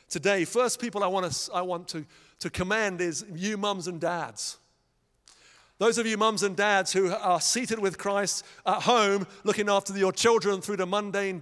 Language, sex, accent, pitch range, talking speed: English, male, British, 180-210 Hz, 175 wpm